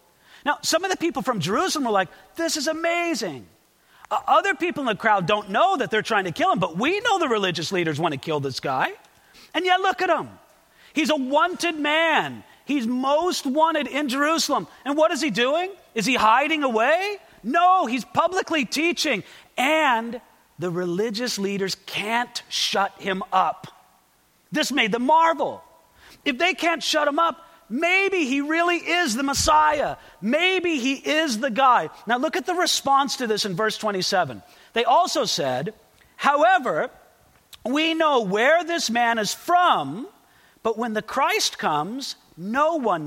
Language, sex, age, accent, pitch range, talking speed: English, male, 40-59, American, 220-330 Hz, 170 wpm